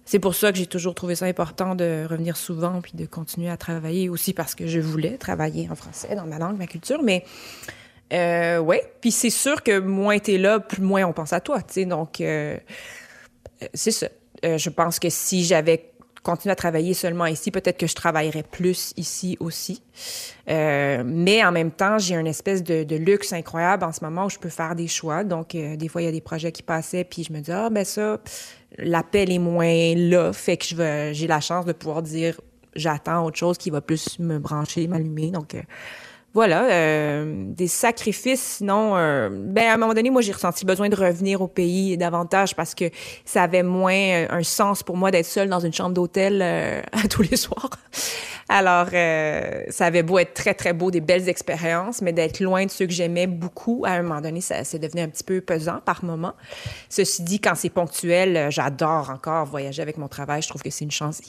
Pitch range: 165-190 Hz